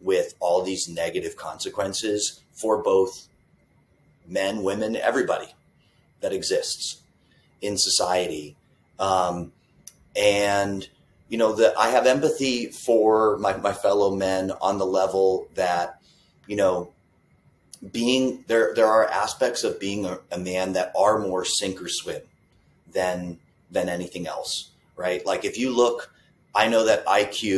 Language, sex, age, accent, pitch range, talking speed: English, male, 30-49, American, 95-120 Hz, 135 wpm